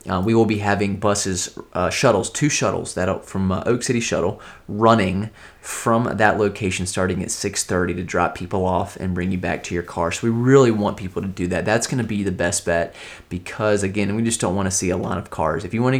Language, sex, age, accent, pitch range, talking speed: English, male, 30-49, American, 95-115 Hz, 235 wpm